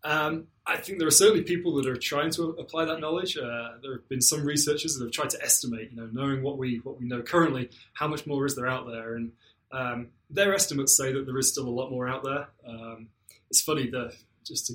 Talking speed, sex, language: 250 wpm, male, English